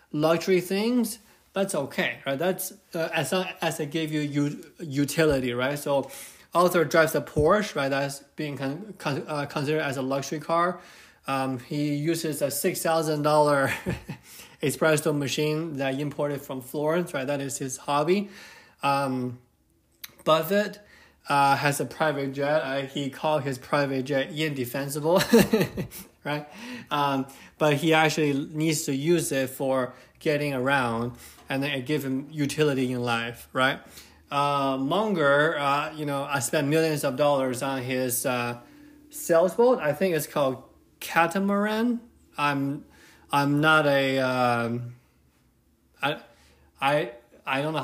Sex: male